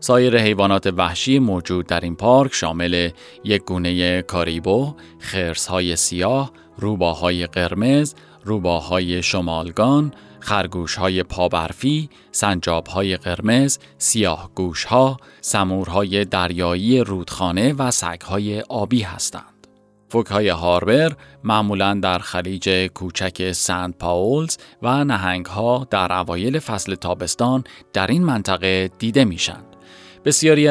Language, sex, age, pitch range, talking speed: Persian, male, 30-49, 90-115 Hz, 110 wpm